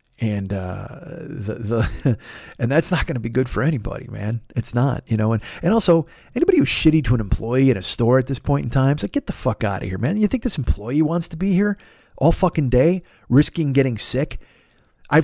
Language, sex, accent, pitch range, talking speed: English, male, American, 105-160 Hz, 230 wpm